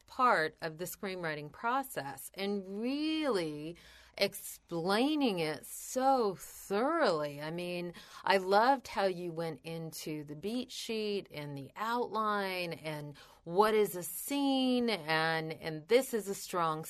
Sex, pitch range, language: female, 150-195 Hz, English